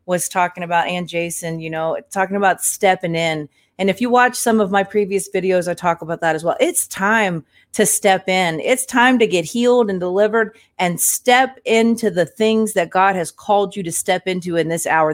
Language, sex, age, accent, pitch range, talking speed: English, female, 30-49, American, 165-205 Hz, 215 wpm